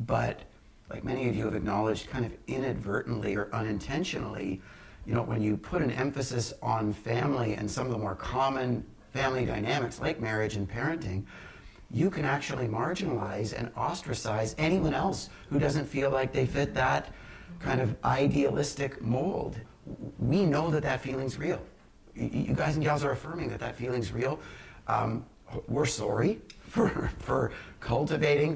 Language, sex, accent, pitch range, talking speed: English, male, American, 115-145 Hz, 155 wpm